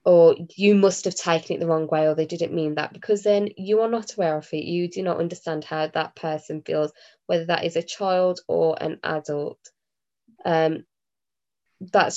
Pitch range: 165-205 Hz